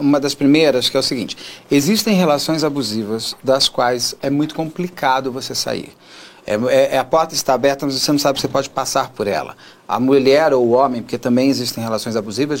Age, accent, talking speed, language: 40-59, Brazilian, 195 wpm, Portuguese